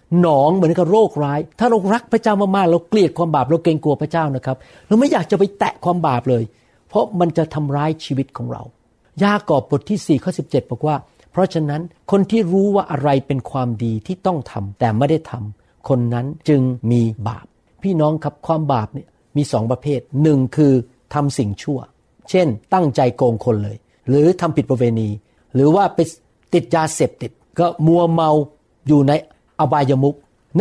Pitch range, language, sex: 130-175 Hz, Thai, male